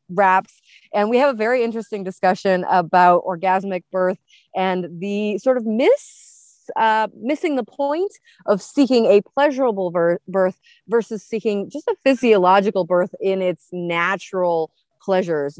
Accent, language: American, English